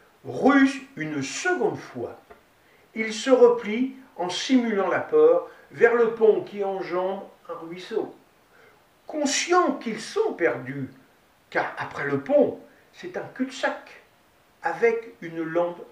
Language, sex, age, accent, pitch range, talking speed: French, male, 60-79, French, 175-295 Hz, 115 wpm